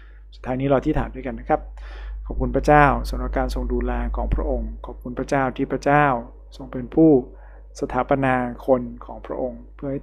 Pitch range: 120-140 Hz